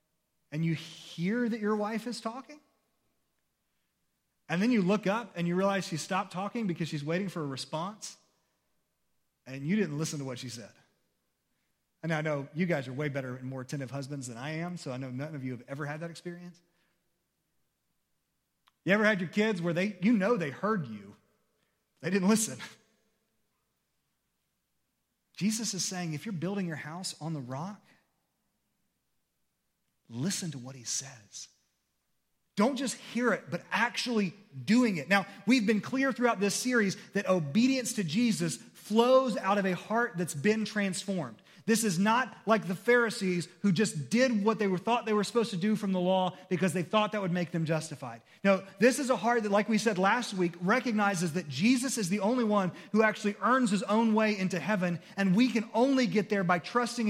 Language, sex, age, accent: English, male, 40-59, American